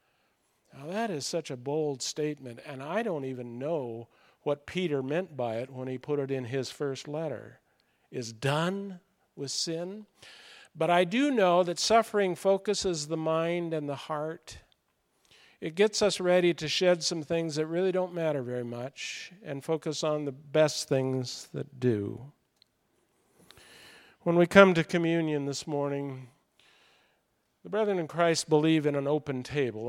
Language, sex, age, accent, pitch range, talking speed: English, male, 50-69, American, 130-160 Hz, 160 wpm